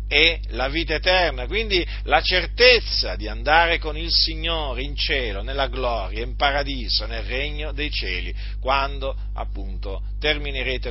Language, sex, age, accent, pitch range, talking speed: Italian, male, 50-69, native, 100-150 Hz, 140 wpm